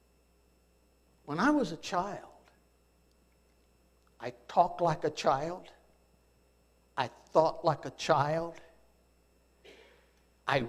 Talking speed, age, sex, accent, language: 90 wpm, 60-79, male, American, English